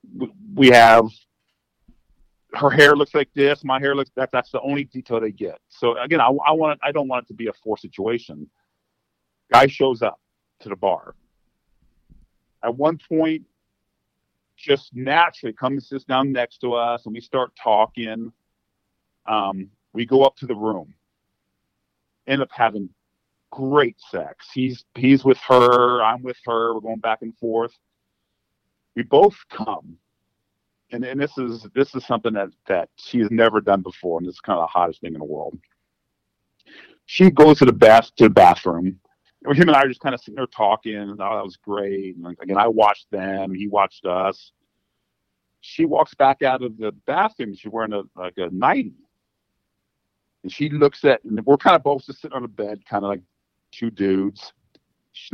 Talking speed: 185 wpm